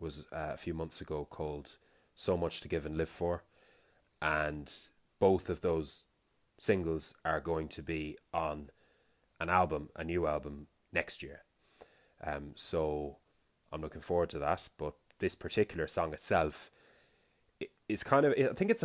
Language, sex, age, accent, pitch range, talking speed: English, male, 20-39, Irish, 80-100 Hz, 155 wpm